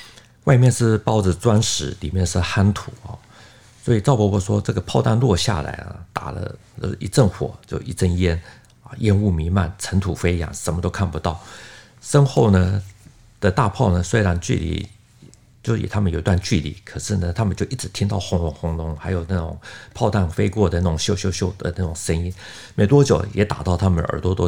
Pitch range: 85-110 Hz